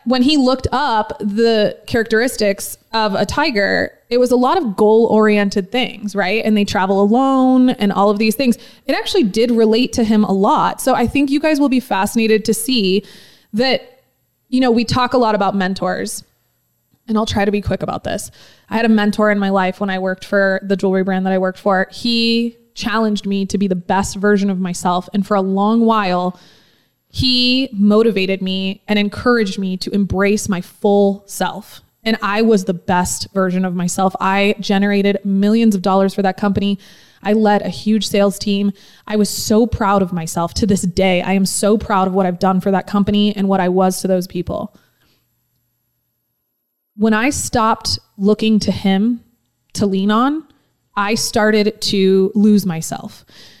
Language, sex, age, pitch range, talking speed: English, female, 20-39, 190-225 Hz, 190 wpm